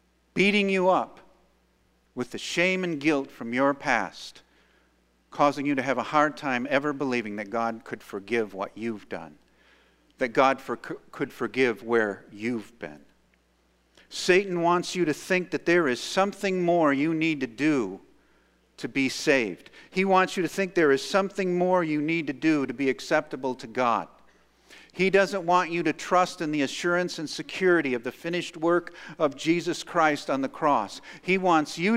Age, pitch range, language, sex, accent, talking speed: 50-69, 105-165 Hz, English, male, American, 175 wpm